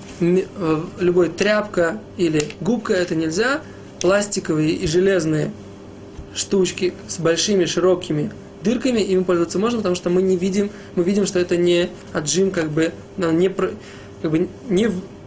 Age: 20-39